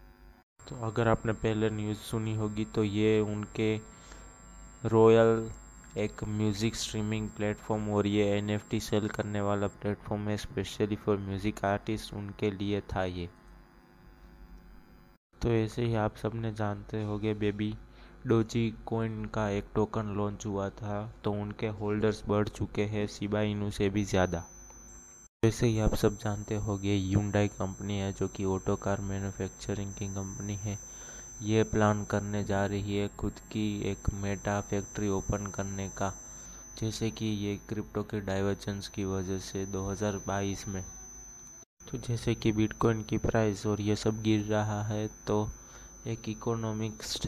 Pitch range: 100-110 Hz